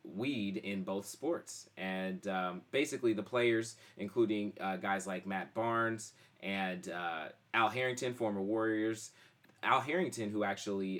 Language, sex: English, male